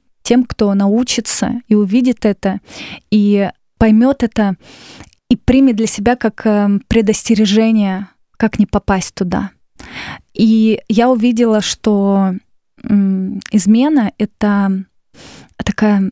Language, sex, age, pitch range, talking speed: Russian, female, 20-39, 205-235 Hz, 100 wpm